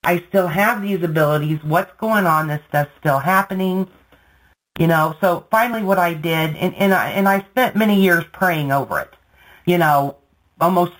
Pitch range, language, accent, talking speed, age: 150-185 Hz, English, American, 180 wpm, 40-59